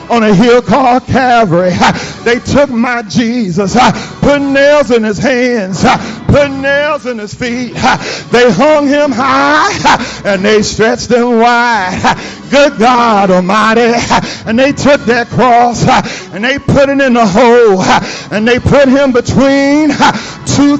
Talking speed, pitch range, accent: 140 wpm, 230-280 Hz, American